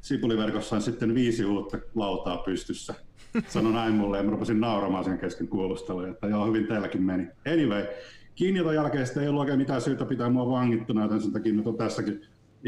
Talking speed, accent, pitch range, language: 170 wpm, native, 105-125 Hz, Finnish